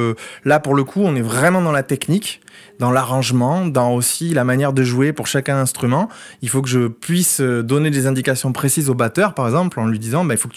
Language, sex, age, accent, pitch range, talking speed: French, male, 20-39, French, 130-180 Hz, 235 wpm